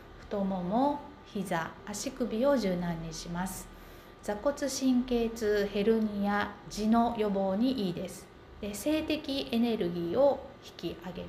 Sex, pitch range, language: female, 190-265 Hz, Japanese